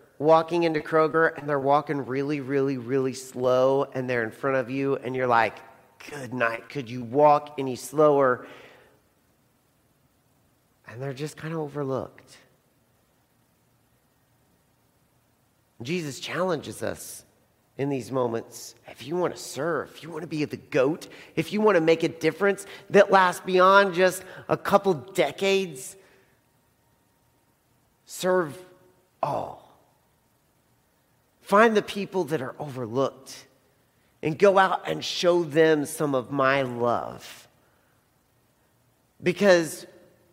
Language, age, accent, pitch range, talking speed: English, 40-59, American, 130-180 Hz, 125 wpm